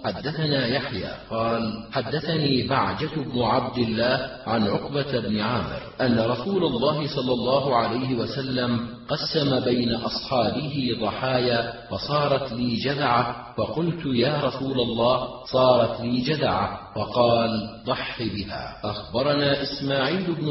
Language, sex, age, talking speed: Arabic, male, 40-59, 115 wpm